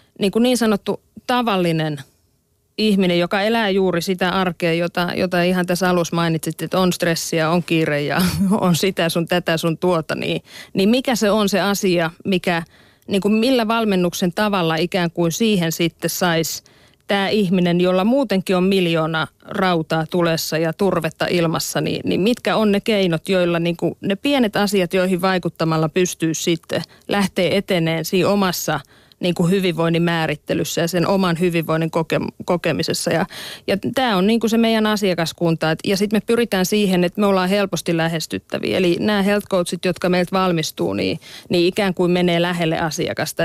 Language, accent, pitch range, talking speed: Finnish, native, 165-195 Hz, 165 wpm